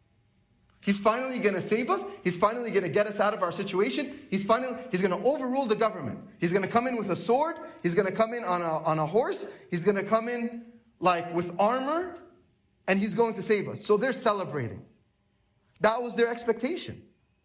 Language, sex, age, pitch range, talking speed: English, male, 30-49, 130-210 Hz, 215 wpm